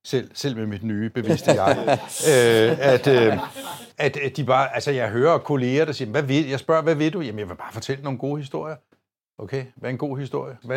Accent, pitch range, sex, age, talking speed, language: native, 125-155 Hz, male, 60-79, 215 wpm, Danish